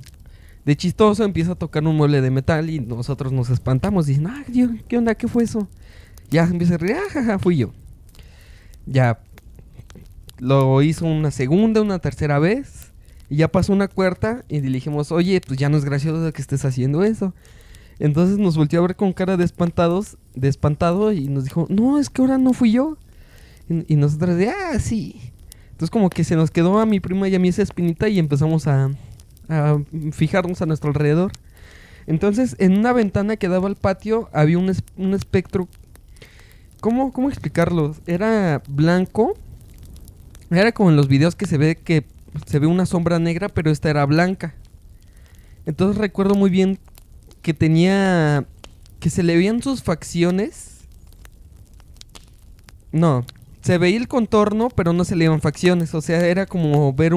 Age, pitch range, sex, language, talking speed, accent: 20-39, 140-190 Hz, male, Spanish, 175 wpm, Mexican